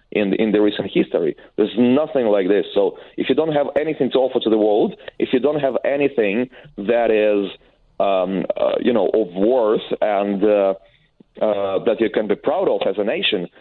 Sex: male